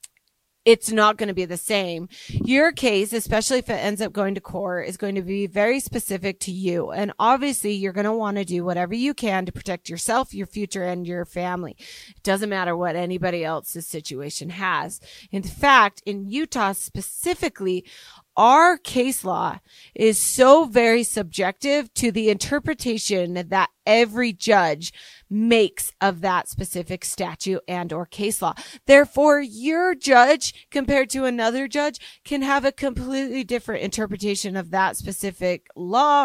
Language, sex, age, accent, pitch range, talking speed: English, female, 30-49, American, 185-260 Hz, 155 wpm